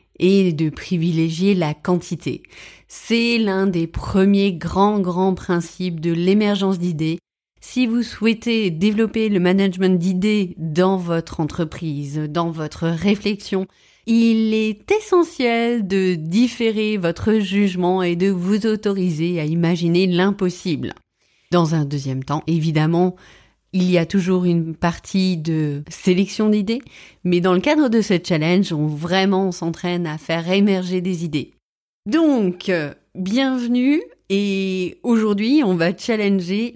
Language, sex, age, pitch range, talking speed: French, female, 30-49, 170-215 Hz, 125 wpm